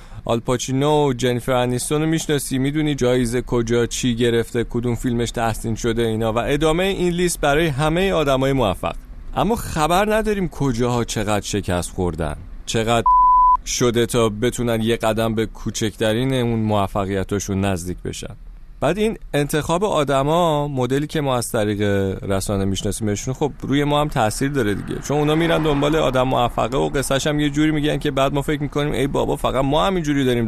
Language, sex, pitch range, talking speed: Persian, male, 100-150 Hz, 165 wpm